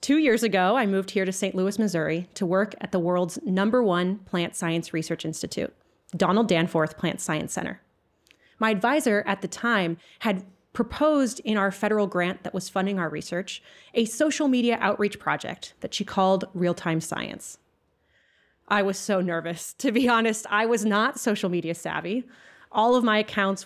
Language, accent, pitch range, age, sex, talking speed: English, American, 185-225 Hz, 30-49, female, 175 wpm